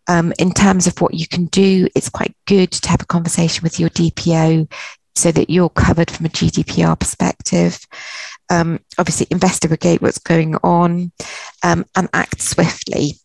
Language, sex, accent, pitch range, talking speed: English, female, British, 160-180 Hz, 165 wpm